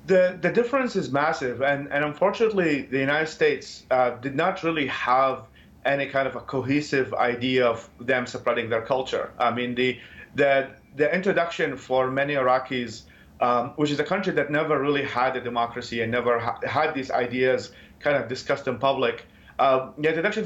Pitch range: 125-150 Hz